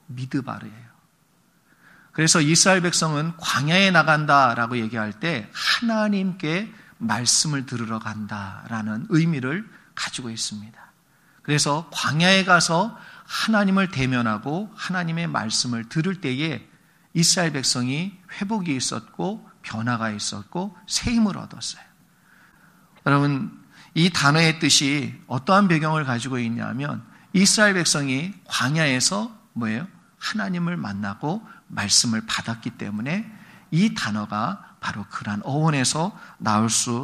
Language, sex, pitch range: Korean, male, 125-190 Hz